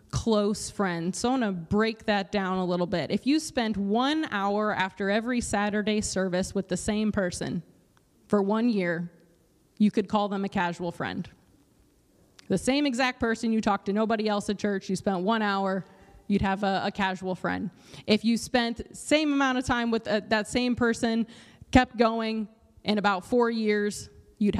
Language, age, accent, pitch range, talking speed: English, 20-39, American, 200-240 Hz, 185 wpm